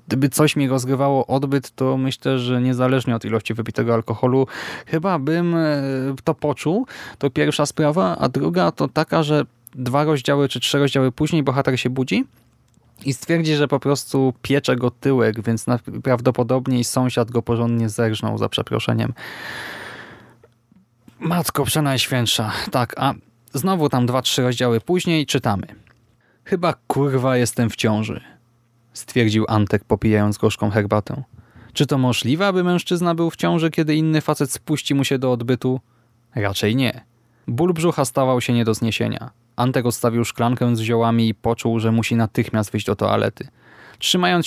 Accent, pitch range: native, 115-140 Hz